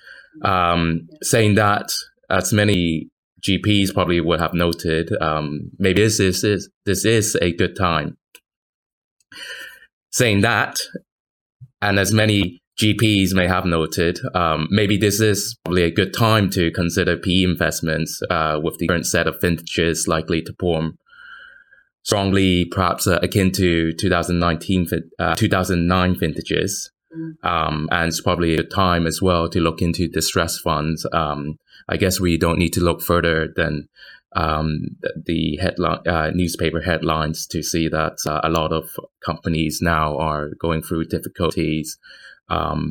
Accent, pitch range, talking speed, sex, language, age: British, 80-95 Hz, 145 wpm, male, English, 20-39